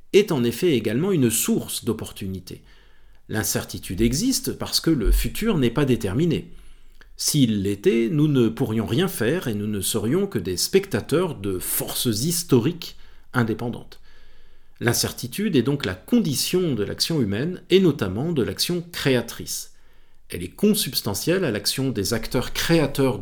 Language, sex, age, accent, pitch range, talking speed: French, male, 40-59, French, 110-165 Hz, 140 wpm